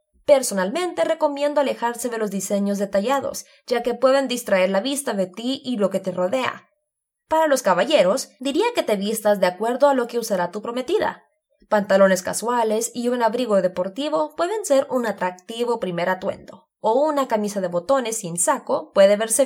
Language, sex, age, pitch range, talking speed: English, female, 20-39, 205-290 Hz, 175 wpm